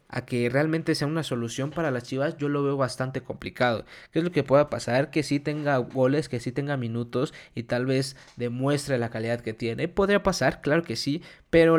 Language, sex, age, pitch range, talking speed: Spanish, male, 20-39, 120-145 Hz, 215 wpm